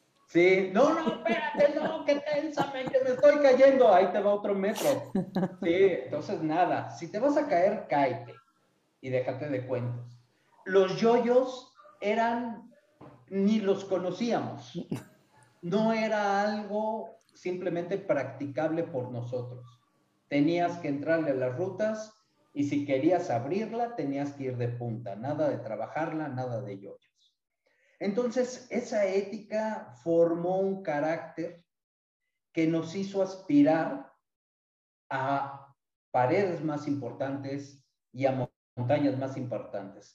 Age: 40-59